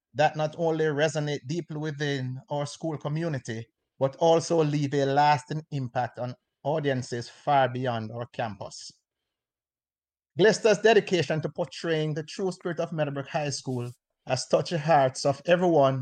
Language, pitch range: English, 130-160 Hz